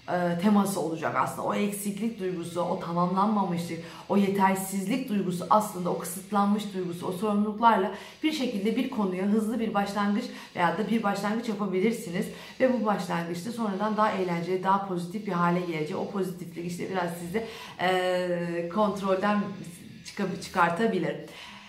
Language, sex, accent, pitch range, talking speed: Turkish, female, native, 175-220 Hz, 130 wpm